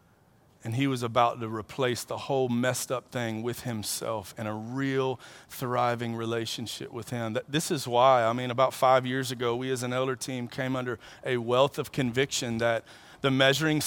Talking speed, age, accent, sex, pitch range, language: 190 wpm, 40-59, American, male, 130-205 Hz, English